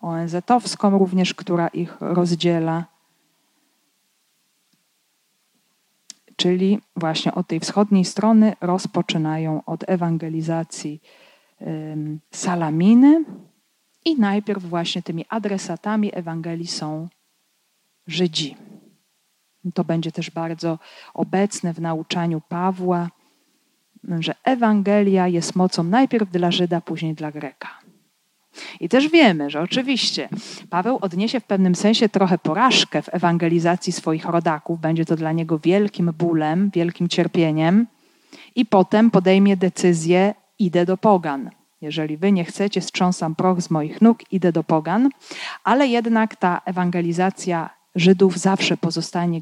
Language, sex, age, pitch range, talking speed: Polish, female, 40-59, 170-205 Hz, 110 wpm